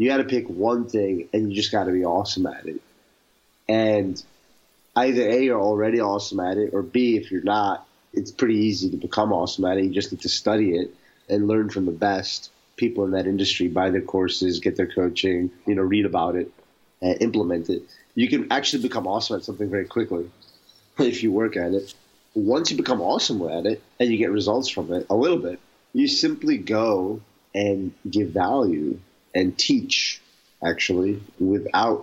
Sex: male